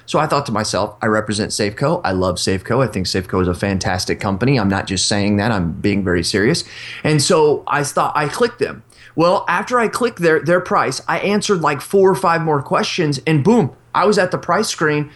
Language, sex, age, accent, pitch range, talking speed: English, male, 30-49, American, 135-200 Hz, 225 wpm